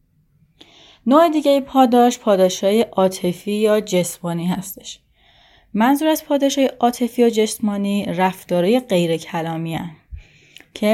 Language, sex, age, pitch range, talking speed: Persian, female, 30-49, 175-220 Hz, 105 wpm